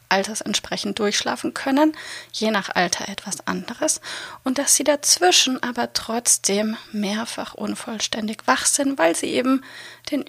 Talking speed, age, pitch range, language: 135 wpm, 30-49, 215-275 Hz, German